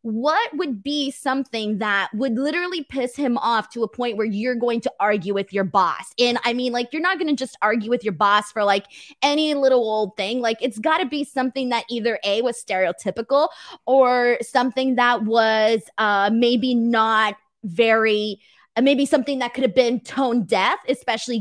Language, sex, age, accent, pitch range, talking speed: English, female, 20-39, American, 215-260 Hz, 195 wpm